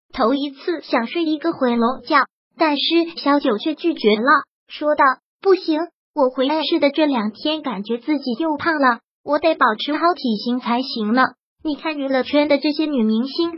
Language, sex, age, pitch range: Chinese, male, 20-39, 260-325 Hz